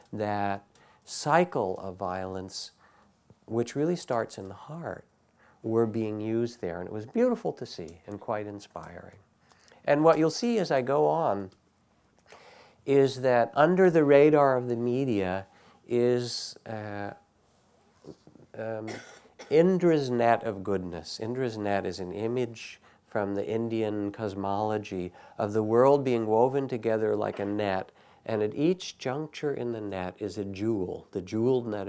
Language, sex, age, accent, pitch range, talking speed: English, male, 50-69, American, 100-130 Hz, 145 wpm